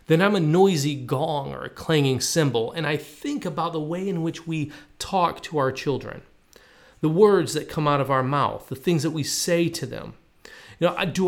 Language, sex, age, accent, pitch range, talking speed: Polish, male, 30-49, American, 140-185 Hz, 215 wpm